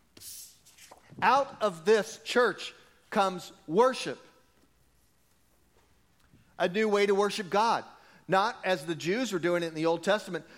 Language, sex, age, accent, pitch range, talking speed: English, male, 40-59, American, 175-220 Hz, 130 wpm